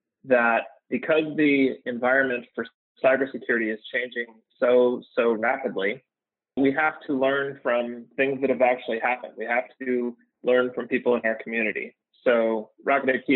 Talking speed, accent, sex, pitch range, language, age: 150 wpm, American, male, 120-155 Hz, English, 30-49